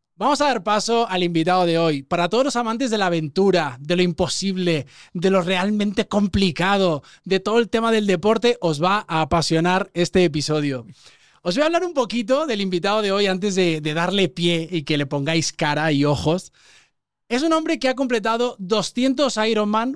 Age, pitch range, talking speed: 20-39, 175-235 Hz, 190 wpm